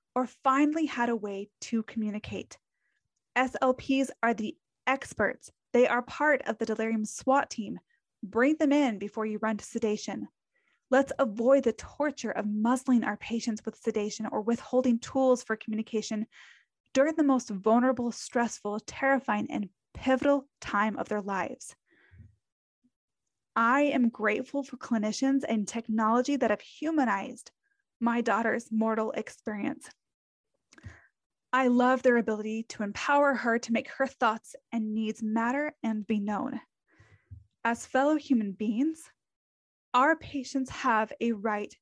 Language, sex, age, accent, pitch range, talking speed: English, female, 20-39, American, 220-270 Hz, 135 wpm